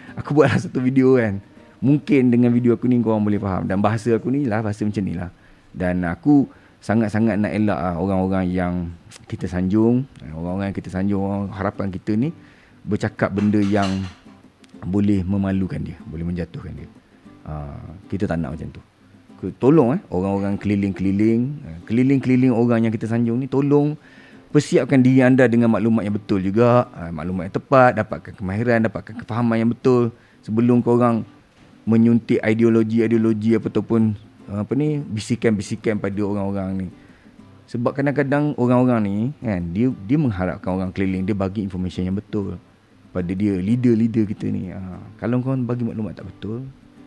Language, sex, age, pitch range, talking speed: Malay, male, 30-49, 95-120 Hz, 150 wpm